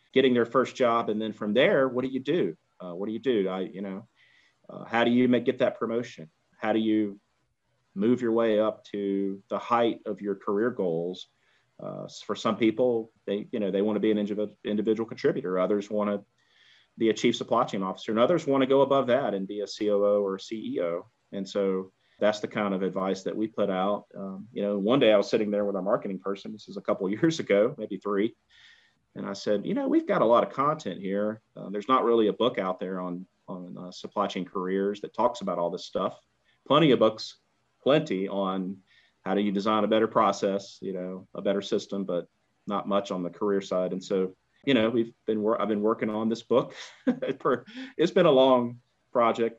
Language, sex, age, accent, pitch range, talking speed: English, male, 30-49, American, 100-115 Hz, 225 wpm